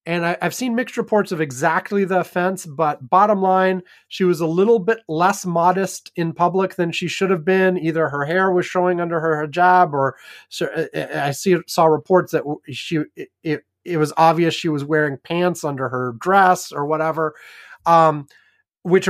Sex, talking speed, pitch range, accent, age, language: male, 185 wpm, 160-205 Hz, American, 30-49, English